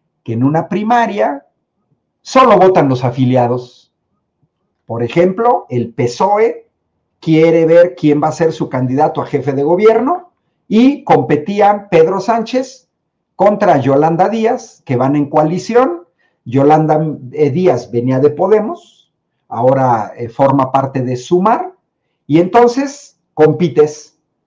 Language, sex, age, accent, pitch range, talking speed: Spanish, male, 50-69, Mexican, 140-200 Hz, 120 wpm